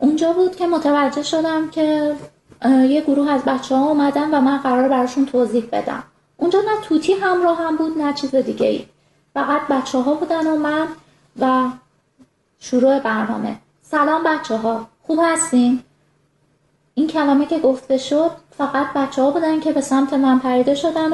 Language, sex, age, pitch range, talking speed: Persian, female, 20-39, 260-325 Hz, 160 wpm